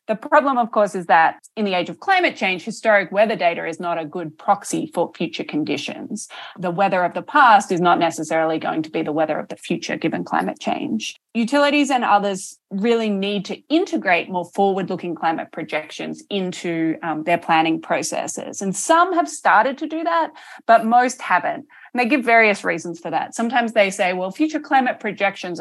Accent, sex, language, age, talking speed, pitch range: Australian, female, English, 20-39, 190 wpm, 170-235 Hz